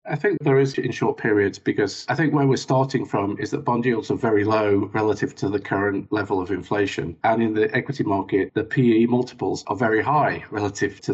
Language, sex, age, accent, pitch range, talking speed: English, male, 40-59, British, 100-135 Hz, 220 wpm